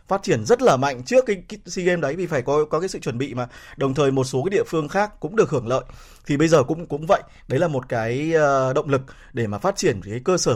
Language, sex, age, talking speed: Vietnamese, male, 20-39, 290 wpm